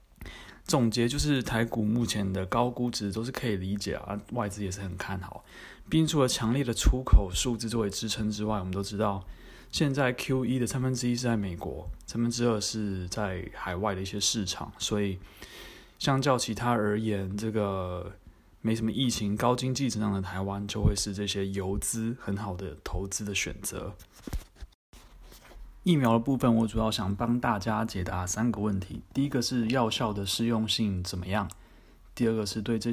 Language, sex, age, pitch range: Chinese, male, 20-39, 95-115 Hz